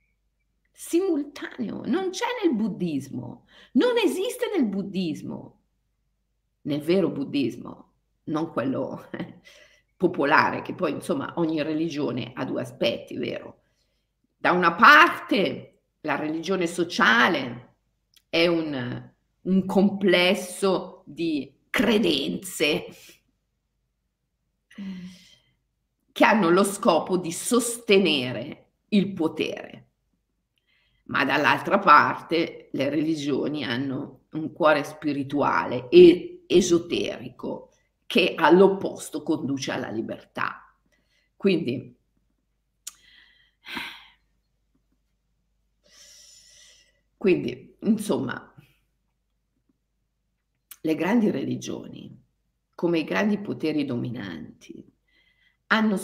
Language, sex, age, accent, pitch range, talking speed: Italian, female, 50-69, native, 155-235 Hz, 80 wpm